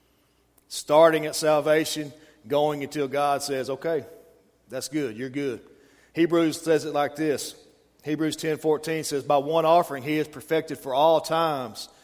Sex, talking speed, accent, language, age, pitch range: male, 150 wpm, American, English, 40-59, 125-150 Hz